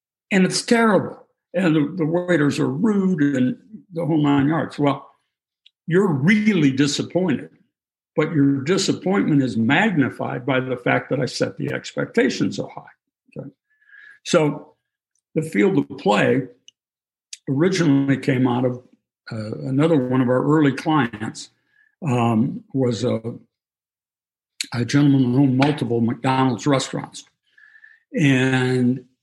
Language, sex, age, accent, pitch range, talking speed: English, male, 60-79, American, 125-155 Hz, 125 wpm